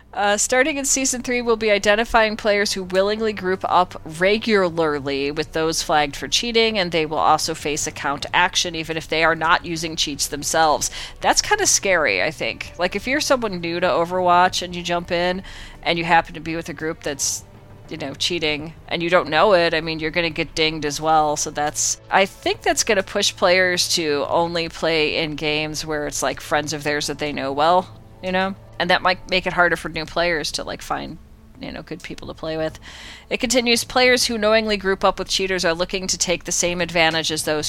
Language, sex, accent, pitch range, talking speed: English, female, American, 155-190 Hz, 220 wpm